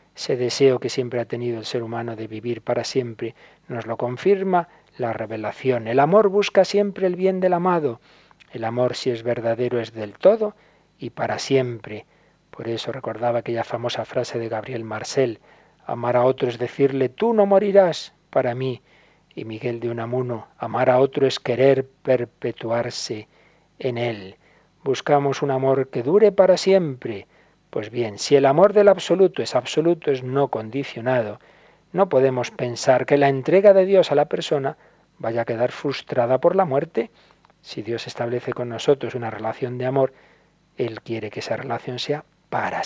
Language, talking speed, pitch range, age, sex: Spanish, 170 wpm, 115-145 Hz, 50-69, male